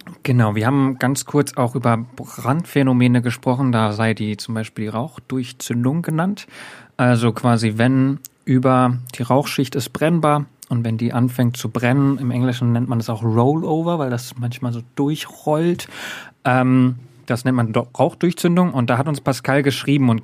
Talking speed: 160 wpm